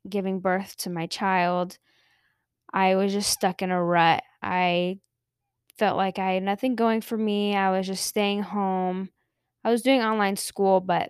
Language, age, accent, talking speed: English, 10-29, American, 175 wpm